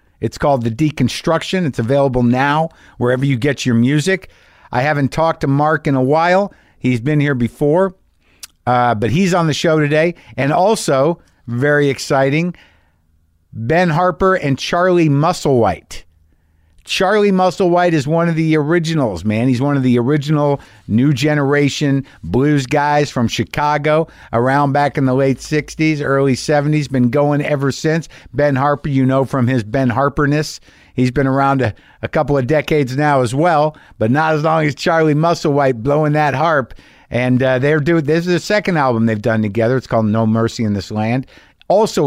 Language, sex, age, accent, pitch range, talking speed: English, male, 50-69, American, 125-160 Hz, 170 wpm